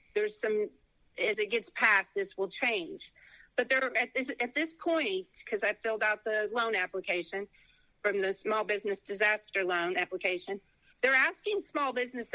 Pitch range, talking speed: 200-270 Hz, 165 wpm